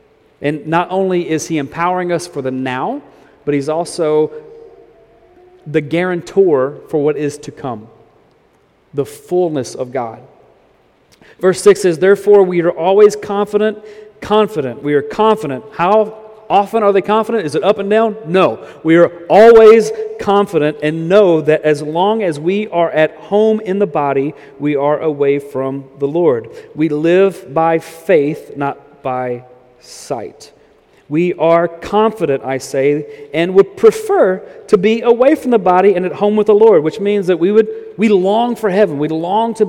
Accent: American